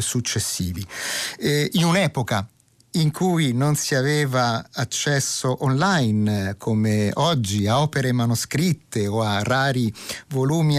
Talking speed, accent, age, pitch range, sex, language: 110 wpm, native, 50-69, 115-150 Hz, male, Italian